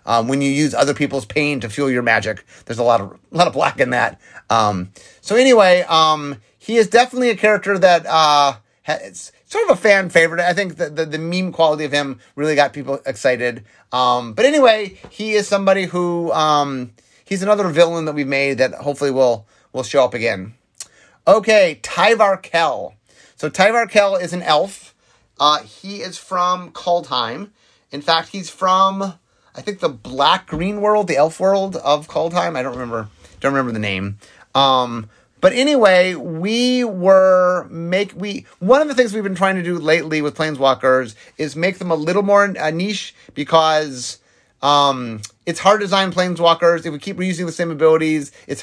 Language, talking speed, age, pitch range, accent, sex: English, 190 wpm, 30-49, 135-190 Hz, American, male